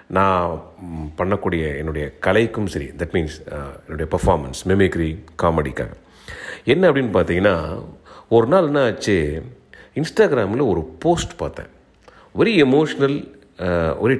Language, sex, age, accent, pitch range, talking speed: Tamil, male, 40-59, native, 85-115 Hz, 105 wpm